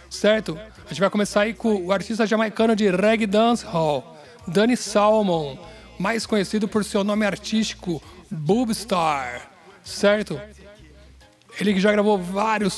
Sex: male